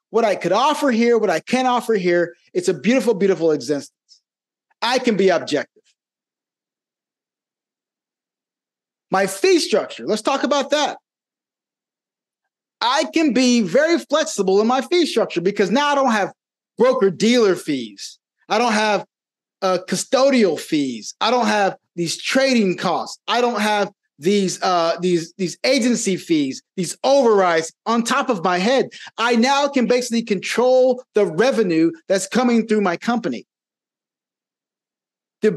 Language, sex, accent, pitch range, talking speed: English, male, American, 190-265 Hz, 140 wpm